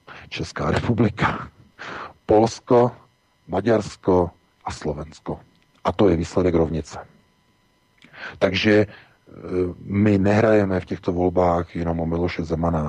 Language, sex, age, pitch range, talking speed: Czech, male, 40-59, 85-100 Hz, 100 wpm